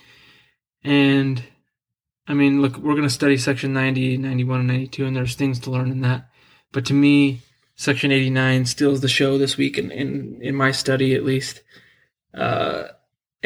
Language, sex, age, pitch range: English, male, 20-39, 130-140 Hz